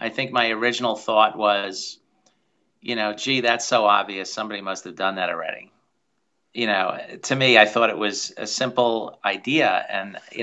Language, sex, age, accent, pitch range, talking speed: English, male, 40-59, American, 105-125 Hz, 175 wpm